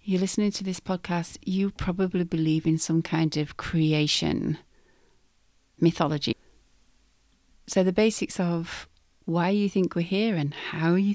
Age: 40-59